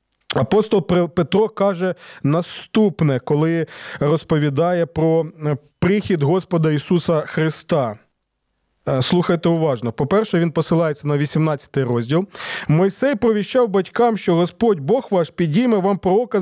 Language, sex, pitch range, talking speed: Ukrainian, male, 155-200 Hz, 105 wpm